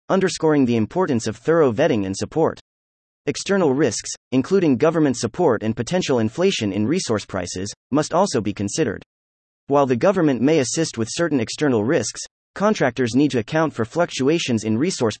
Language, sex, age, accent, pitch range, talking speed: English, male, 30-49, American, 105-155 Hz, 160 wpm